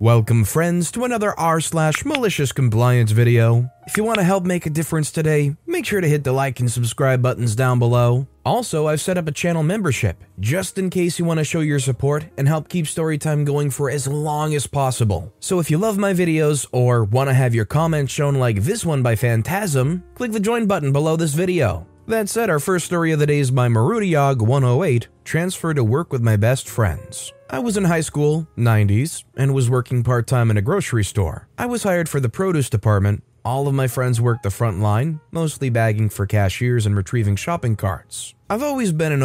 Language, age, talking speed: English, 20-39, 215 wpm